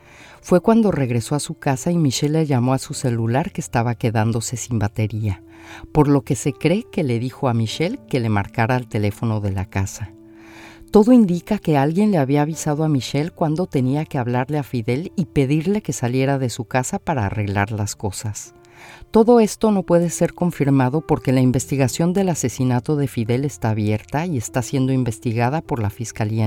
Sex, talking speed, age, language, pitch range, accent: female, 190 wpm, 40-59, Spanish, 110-165 Hz, Mexican